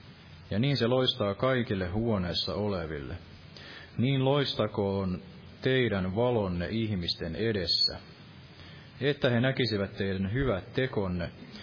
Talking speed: 100 wpm